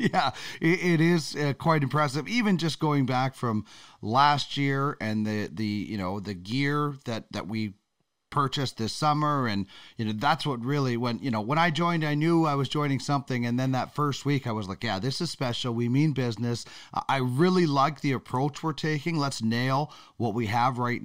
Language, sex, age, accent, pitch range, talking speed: English, male, 30-49, American, 120-150 Hz, 200 wpm